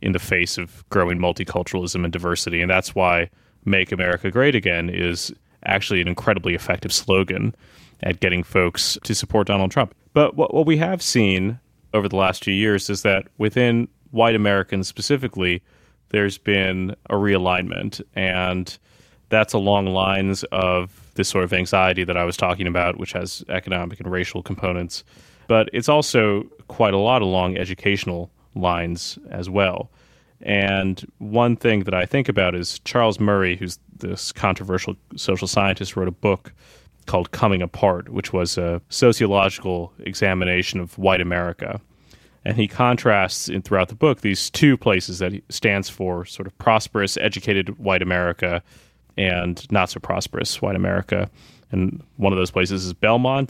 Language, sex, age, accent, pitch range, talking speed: English, male, 30-49, American, 90-105 Hz, 155 wpm